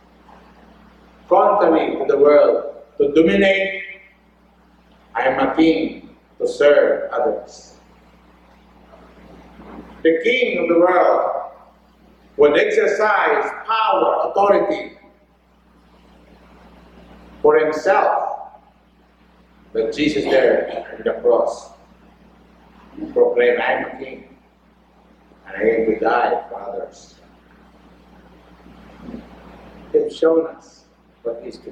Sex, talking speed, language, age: male, 90 wpm, English, 60-79